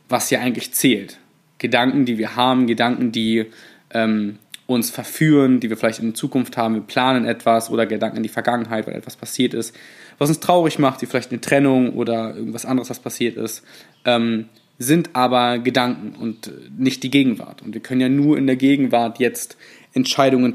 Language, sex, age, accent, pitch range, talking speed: German, male, 20-39, German, 115-135 Hz, 185 wpm